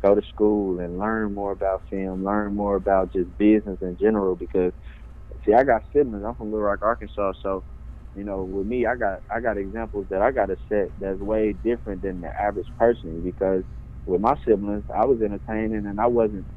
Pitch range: 90-110 Hz